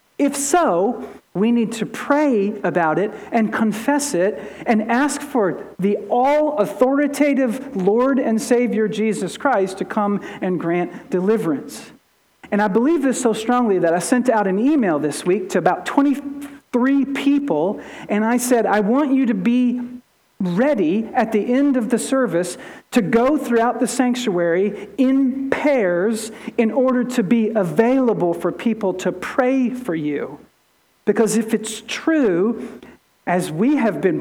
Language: English